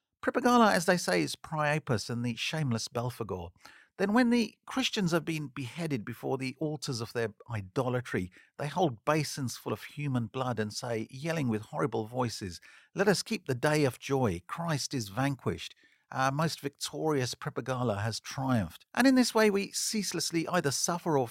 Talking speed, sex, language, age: 170 wpm, male, English, 50-69